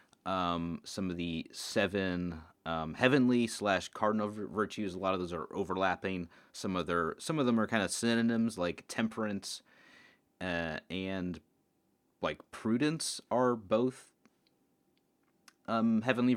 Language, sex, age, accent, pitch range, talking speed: English, male, 30-49, American, 80-110 Hz, 130 wpm